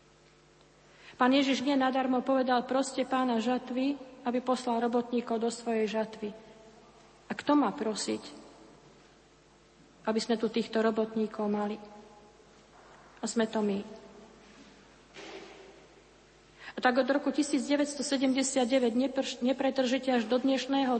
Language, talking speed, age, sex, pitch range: Slovak, 110 wpm, 40-59, female, 220-255 Hz